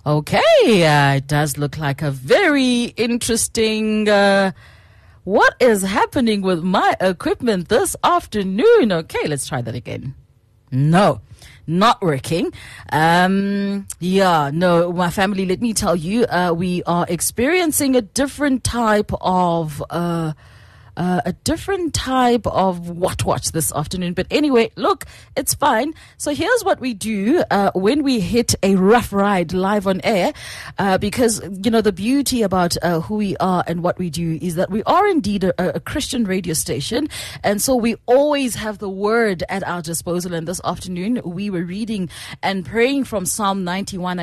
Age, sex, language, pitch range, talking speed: 30-49, female, English, 170-225 Hz, 160 wpm